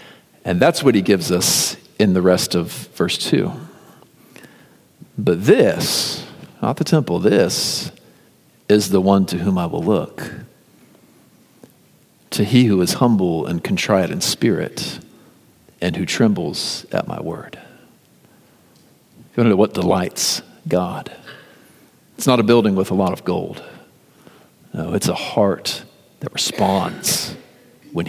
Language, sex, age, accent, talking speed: English, male, 50-69, American, 135 wpm